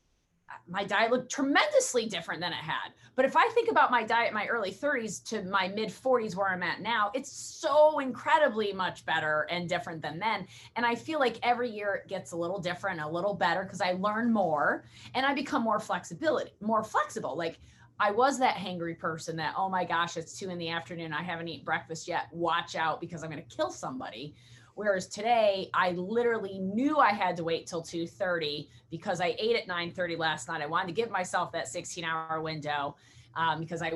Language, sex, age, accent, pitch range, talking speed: English, female, 30-49, American, 165-230 Hz, 205 wpm